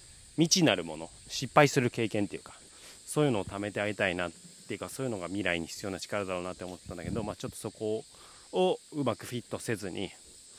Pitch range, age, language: 95-135 Hz, 30-49, Japanese